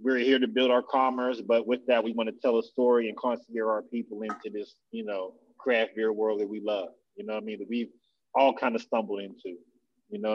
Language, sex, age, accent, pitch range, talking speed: English, male, 30-49, American, 115-135 Hz, 250 wpm